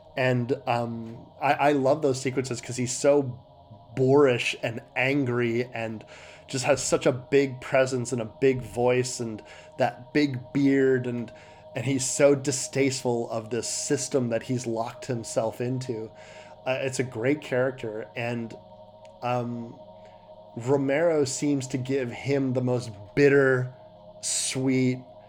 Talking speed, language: 135 wpm, English